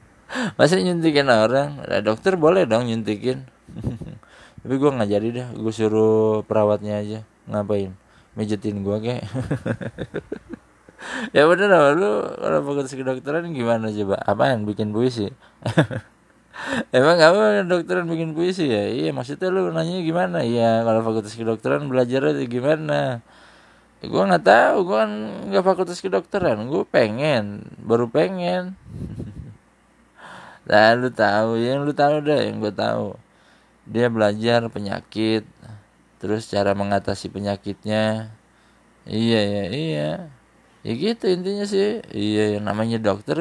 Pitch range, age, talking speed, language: 105-150 Hz, 20-39, 120 wpm, Indonesian